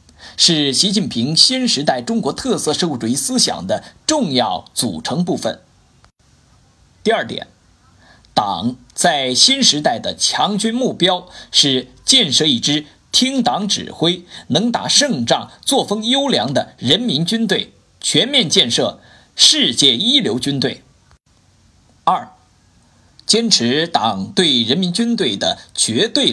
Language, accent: Chinese, native